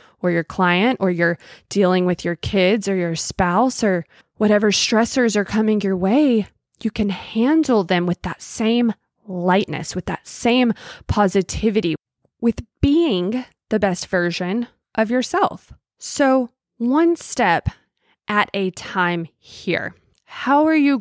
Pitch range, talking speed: 180-225 Hz, 135 wpm